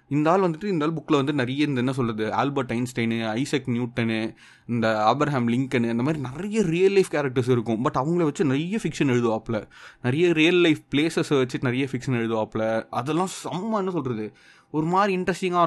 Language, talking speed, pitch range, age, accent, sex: Tamil, 175 wpm, 115-155 Hz, 20-39, native, male